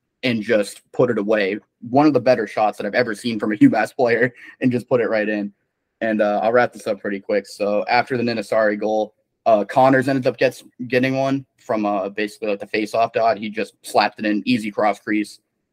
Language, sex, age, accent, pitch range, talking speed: English, male, 20-39, American, 105-130 Hz, 225 wpm